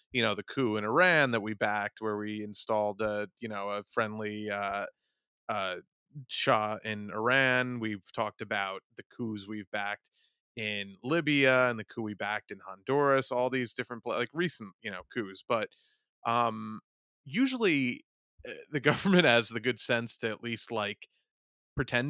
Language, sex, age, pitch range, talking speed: English, male, 30-49, 105-130 Hz, 165 wpm